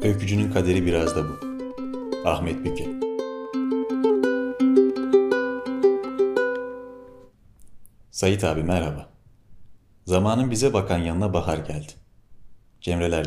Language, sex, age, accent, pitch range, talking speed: Turkish, male, 30-49, native, 85-110 Hz, 75 wpm